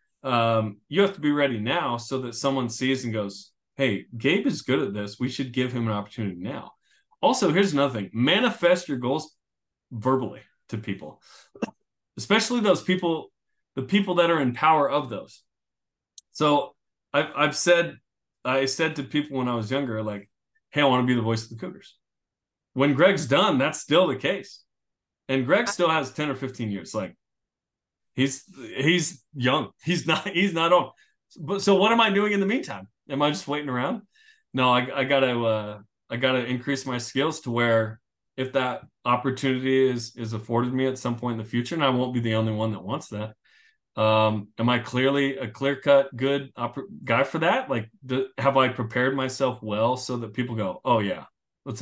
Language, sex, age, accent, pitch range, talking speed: English, male, 20-39, American, 115-150 Hz, 190 wpm